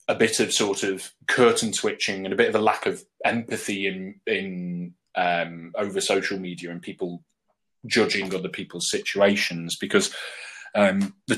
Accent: British